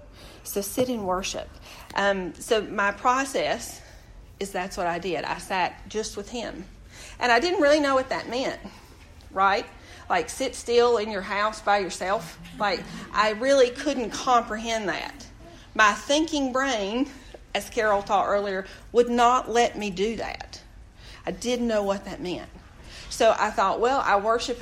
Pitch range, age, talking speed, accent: 195-250 Hz, 40-59, 160 wpm, American